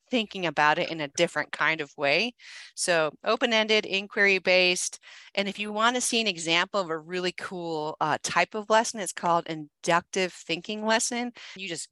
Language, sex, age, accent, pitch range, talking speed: English, female, 30-49, American, 160-200 Hz, 175 wpm